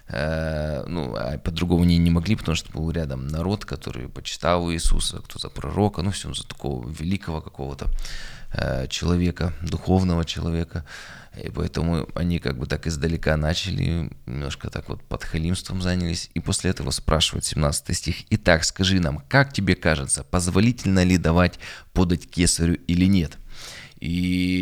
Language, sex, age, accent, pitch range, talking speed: Russian, male, 20-39, native, 75-90 Hz, 145 wpm